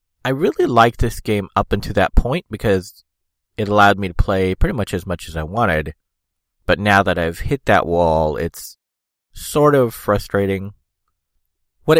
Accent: American